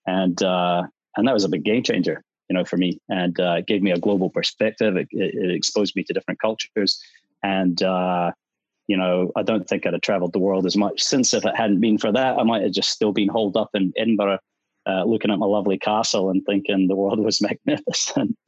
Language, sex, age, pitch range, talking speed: English, male, 30-49, 95-105 Hz, 225 wpm